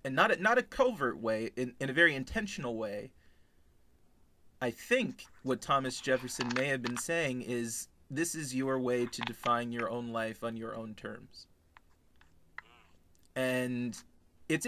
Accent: American